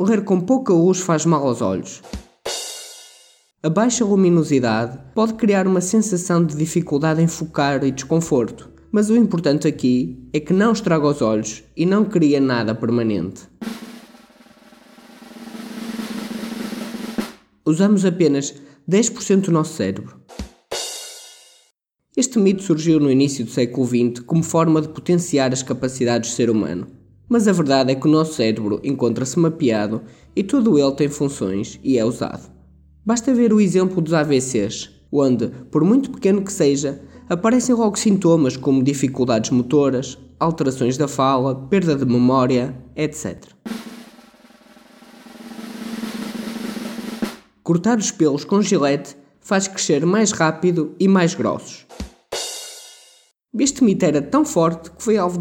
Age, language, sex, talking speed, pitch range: 20-39, Portuguese, male, 130 wpm, 135-225 Hz